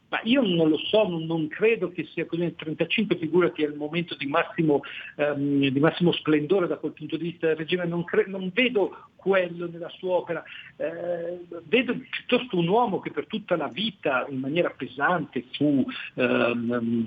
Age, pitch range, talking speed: 50-69, 145-180 Hz, 185 wpm